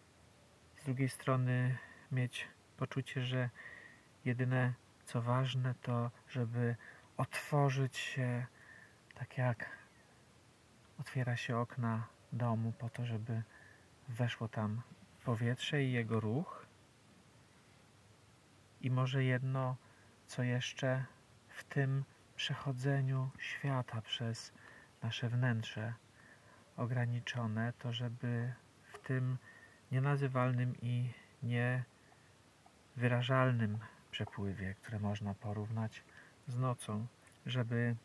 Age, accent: 40-59, native